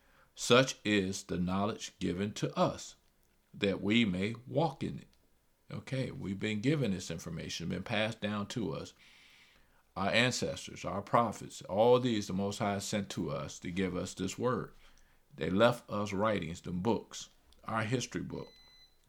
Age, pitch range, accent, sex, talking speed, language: 50-69, 90-115 Hz, American, male, 155 wpm, English